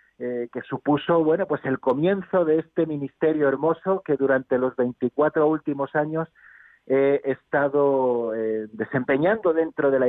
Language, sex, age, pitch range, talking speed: Spanish, male, 40-59, 125-160 Hz, 145 wpm